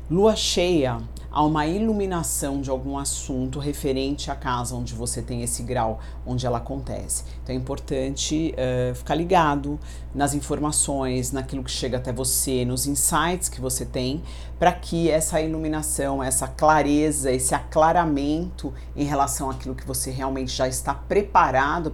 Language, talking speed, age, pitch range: Portuguese, 150 wpm, 50-69, 125-150 Hz